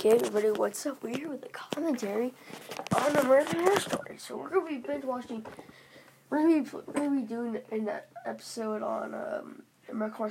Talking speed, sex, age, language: 175 wpm, female, 10-29, English